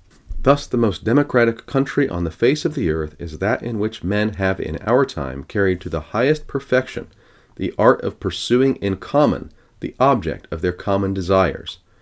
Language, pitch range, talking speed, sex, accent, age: English, 85-115 Hz, 185 wpm, male, American, 40-59